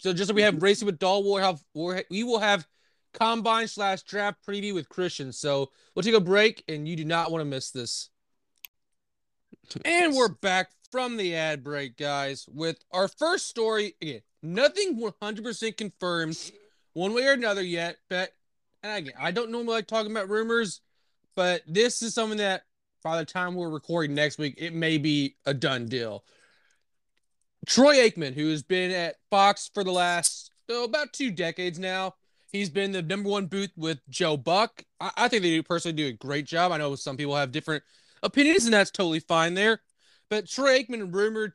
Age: 20-39